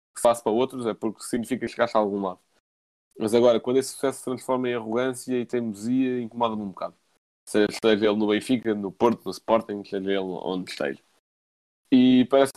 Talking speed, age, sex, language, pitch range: 185 wpm, 20-39, male, Portuguese, 100-130 Hz